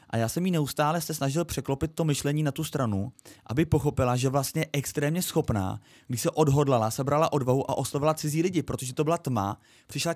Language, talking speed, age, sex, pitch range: Czech, 195 wpm, 20-39, male, 125-155 Hz